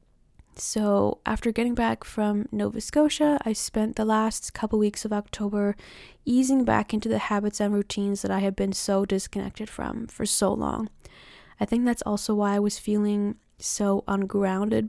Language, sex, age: English, female, 10-29